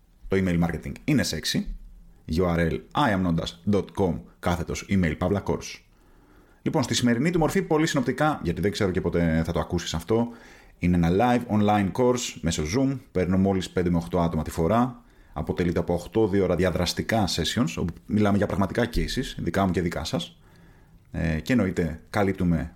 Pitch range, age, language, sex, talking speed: 85-115 Hz, 30-49, Greek, male, 150 wpm